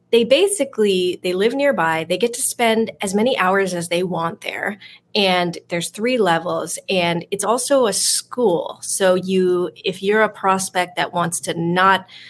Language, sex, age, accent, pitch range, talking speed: English, female, 30-49, American, 170-205 Hz, 170 wpm